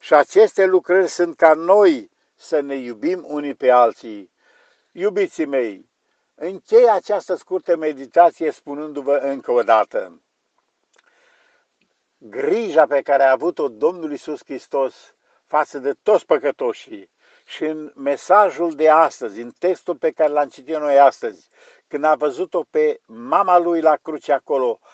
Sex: male